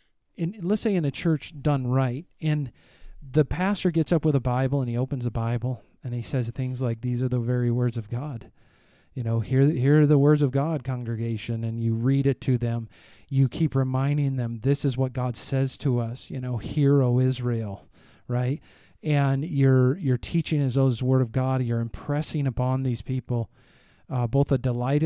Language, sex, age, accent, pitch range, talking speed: English, male, 40-59, American, 125-145 Hz, 200 wpm